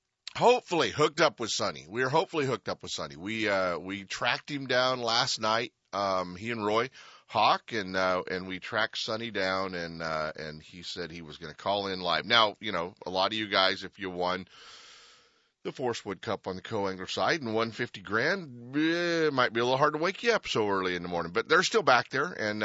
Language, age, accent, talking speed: English, 30-49, American, 245 wpm